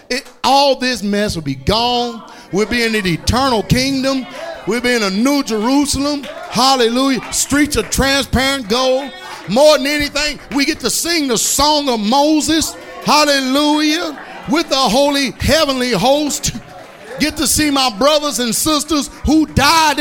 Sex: male